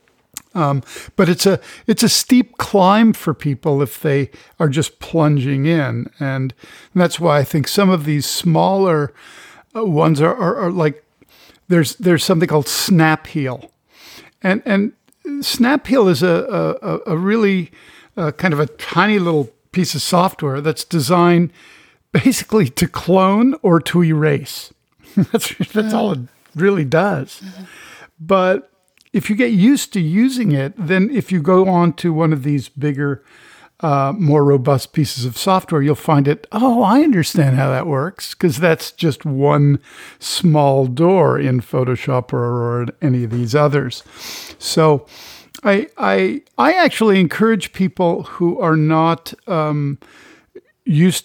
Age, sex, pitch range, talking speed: 50-69, male, 145-190 Hz, 150 wpm